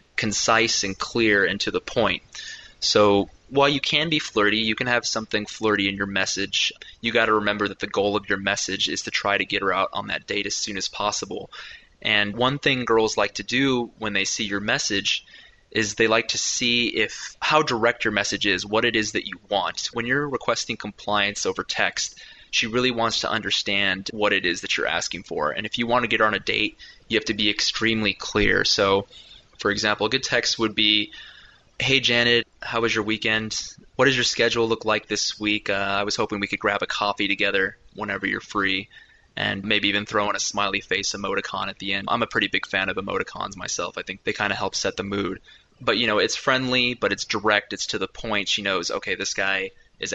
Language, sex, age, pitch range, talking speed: English, male, 20-39, 100-120 Hz, 225 wpm